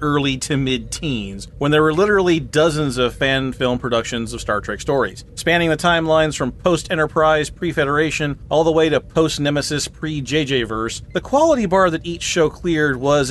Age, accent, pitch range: 40-59, American, 120-150 Hz